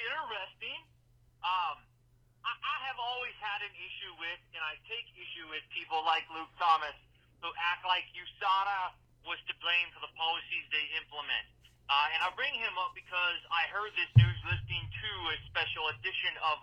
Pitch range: 160-245 Hz